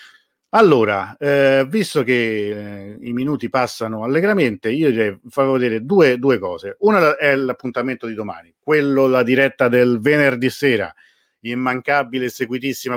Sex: male